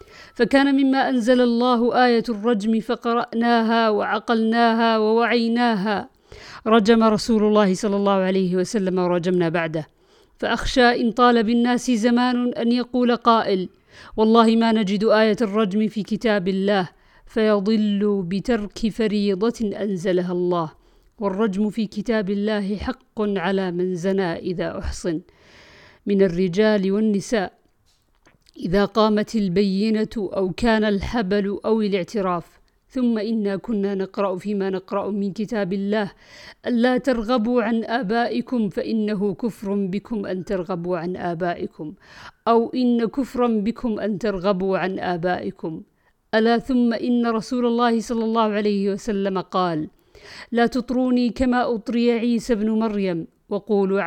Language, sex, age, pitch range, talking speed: Arabic, female, 50-69, 195-235 Hz, 120 wpm